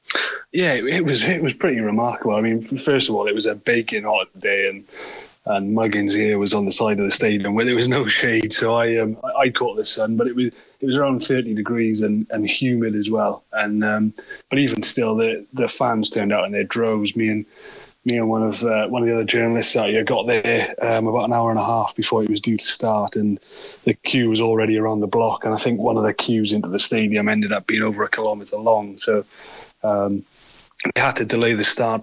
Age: 20-39